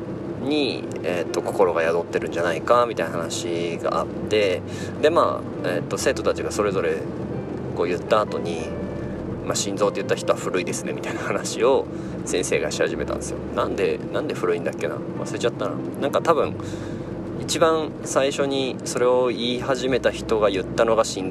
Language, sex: Japanese, male